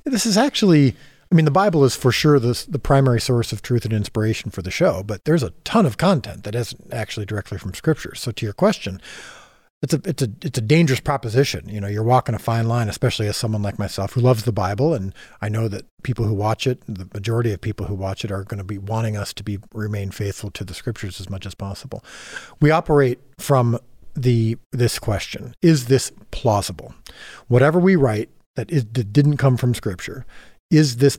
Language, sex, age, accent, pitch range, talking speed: English, male, 40-59, American, 110-140 Hz, 220 wpm